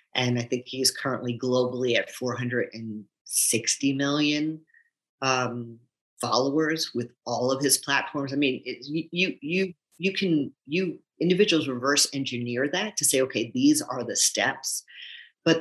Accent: American